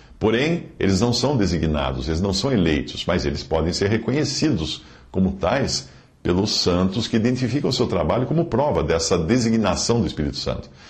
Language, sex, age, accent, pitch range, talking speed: English, male, 50-69, Brazilian, 80-125 Hz, 165 wpm